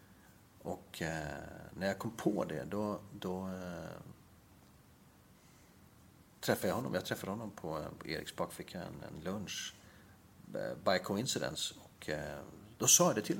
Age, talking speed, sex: 40-59, 140 wpm, male